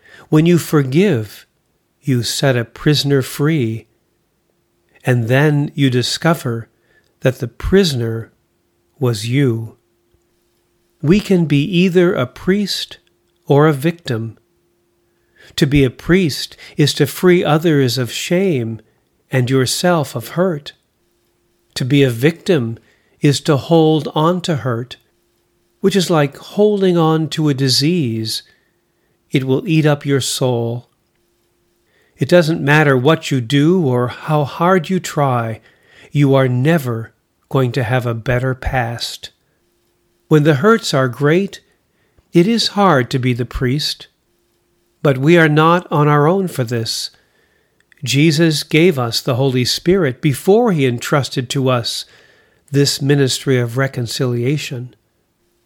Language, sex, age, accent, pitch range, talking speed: English, male, 50-69, American, 120-160 Hz, 130 wpm